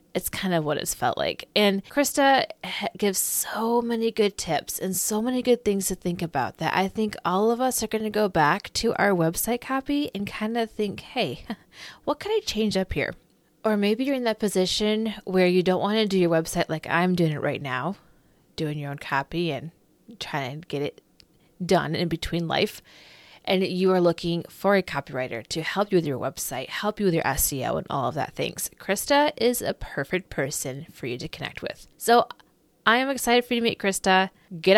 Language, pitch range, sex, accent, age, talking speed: English, 170-230 Hz, female, American, 20-39, 215 wpm